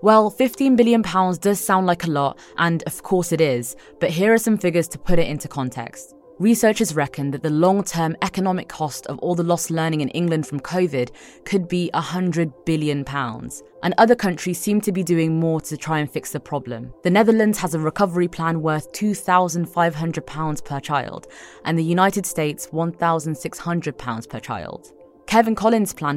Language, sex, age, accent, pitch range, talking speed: English, female, 20-39, British, 145-185 Hz, 180 wpm